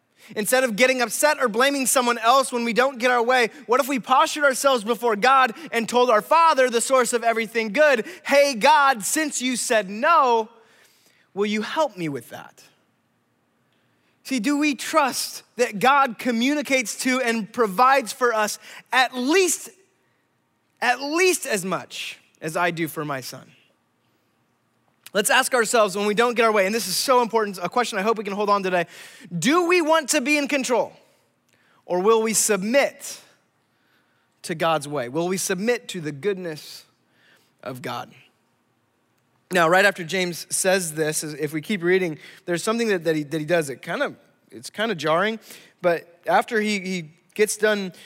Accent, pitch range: American, 180-255 Hz